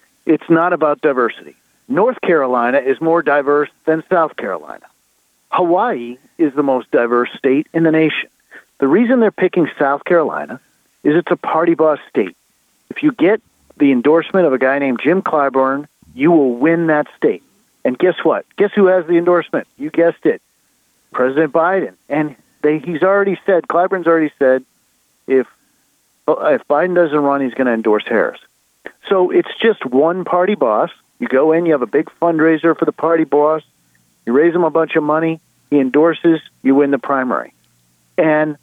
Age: 50-69